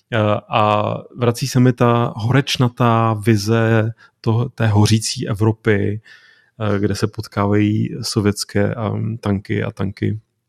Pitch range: 105-120 Hz